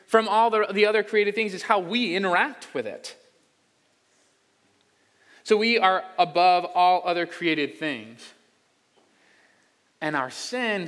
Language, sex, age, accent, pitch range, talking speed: English, male, 20-39, American, 140-180 Hz, 125 wpm